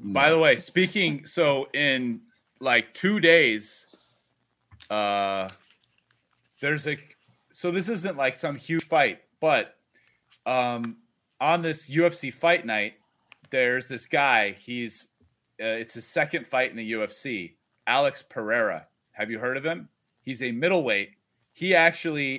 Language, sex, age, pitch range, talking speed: English, male, 30-49, 110-145 Hz, 140 wpm